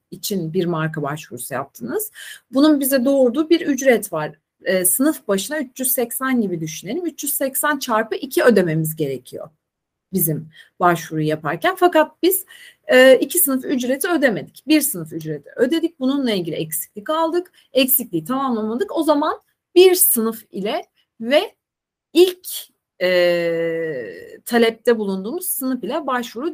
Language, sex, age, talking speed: Turkish, female, 40-59, 120 wpm